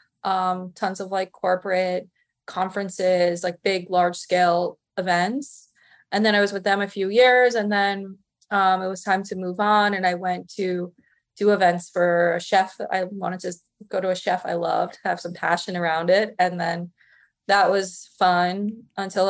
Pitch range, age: 175-200 Hz, 20-39